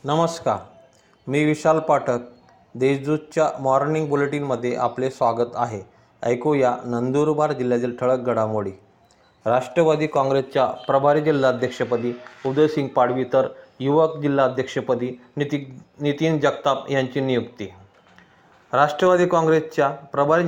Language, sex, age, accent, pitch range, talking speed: Marathi, male, 30-49, native, 125-150 Hz, 95 wpm